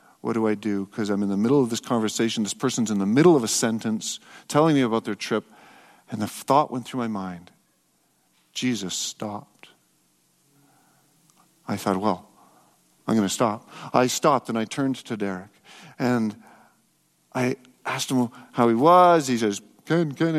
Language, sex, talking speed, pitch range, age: English, male, 175 wpm, 120-165 Hz, 50-69